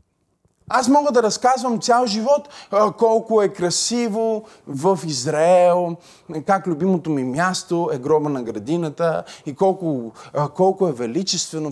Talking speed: 125 wpm